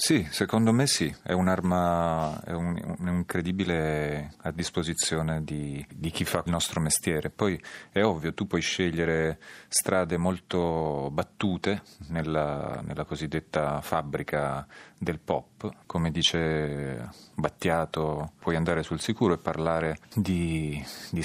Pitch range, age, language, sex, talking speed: 80-95 Hz, 30-49, Italian, male, 120 wpm